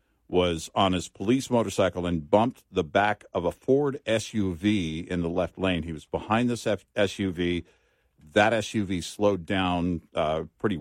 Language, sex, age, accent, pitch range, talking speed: English, male, 50-69, American, 85-100 Hz, 155 wpm